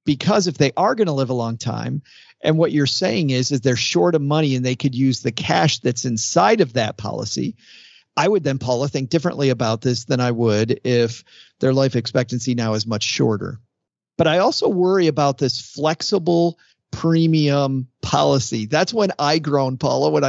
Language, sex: English, male